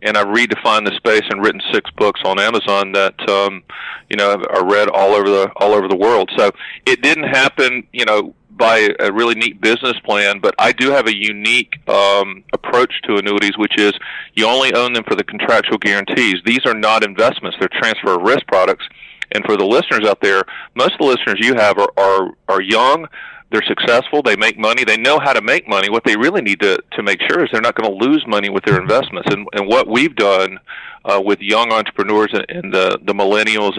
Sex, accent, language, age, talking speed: male, American, English, 40-59, 220 wpm